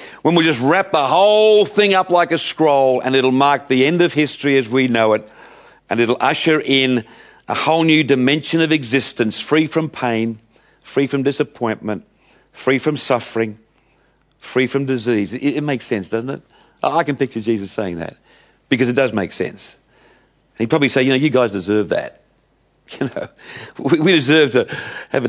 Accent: British